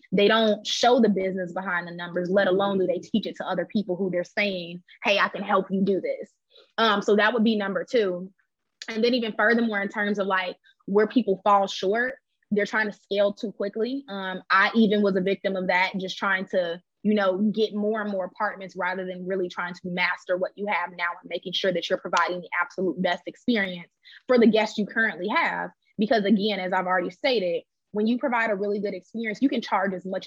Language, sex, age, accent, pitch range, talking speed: English, female, 20-39, American, 185-215 Hz, 225 wpm